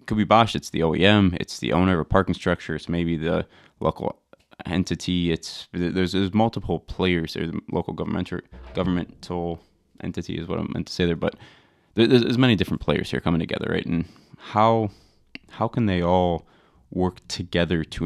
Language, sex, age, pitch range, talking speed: English, male, 20-39, 85-95 Hz, 185 wpm